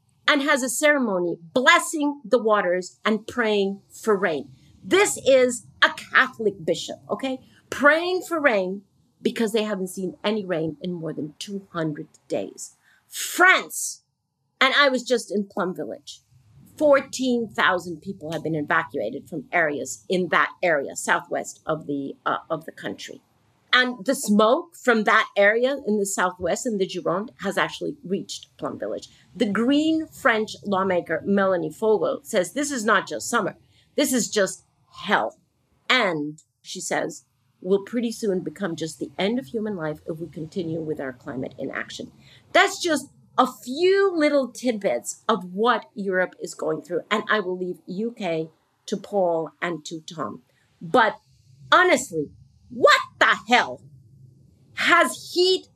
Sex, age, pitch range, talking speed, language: female, 50-69, 160-255 Hz, 150 wpm, English